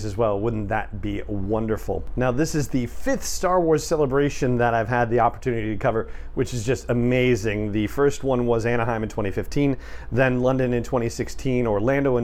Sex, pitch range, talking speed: male, 110-135 Hz, 185 wpm